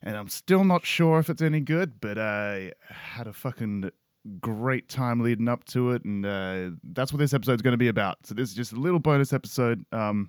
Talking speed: 235 wpm